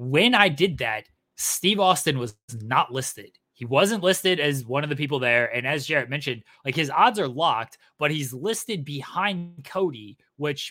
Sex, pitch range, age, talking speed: male, 125-155 Hz, 20-39, 185 wpm